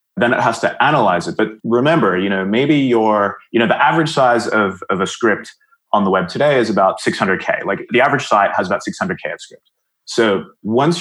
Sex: male